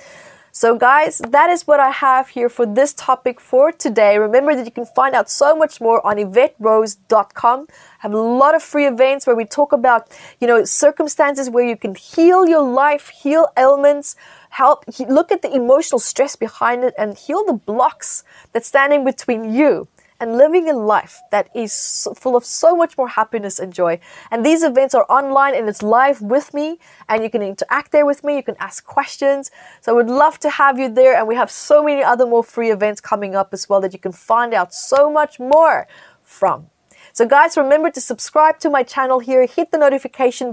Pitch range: 230-290 Hz